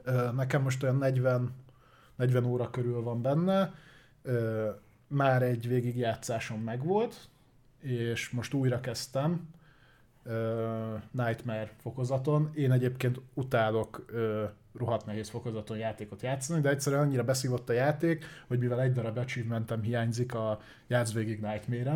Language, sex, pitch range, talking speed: Hungarian, male, 120-140 Hz, 120 wpm